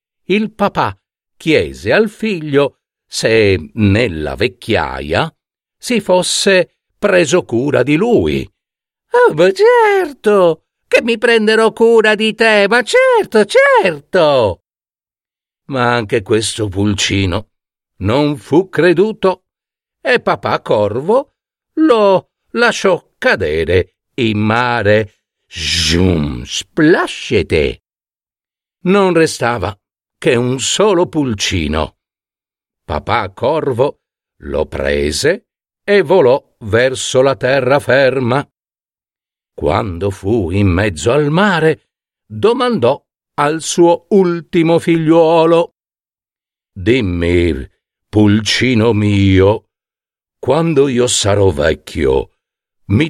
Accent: native